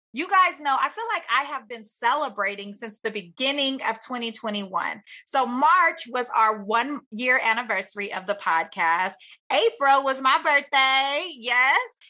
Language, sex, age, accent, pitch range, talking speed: English, female, 30-49, American, 205-280 Hz, 145 wpm